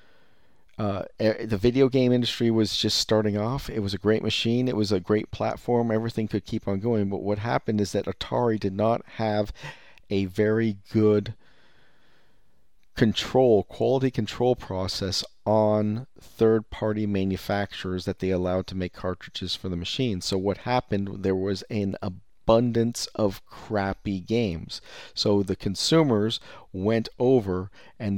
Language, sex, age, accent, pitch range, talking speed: English, male, 40-59, American, 100-115 Hz, 145 wpm